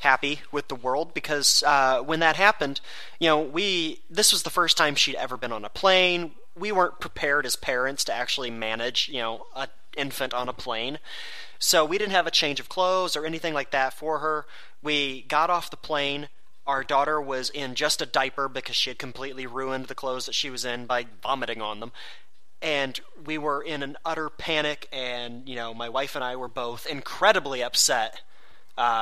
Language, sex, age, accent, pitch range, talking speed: English, male, 30-49, American, 130-160 Hz, 205 wpm